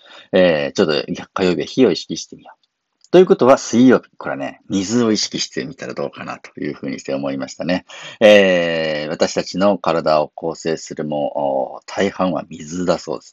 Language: Japanese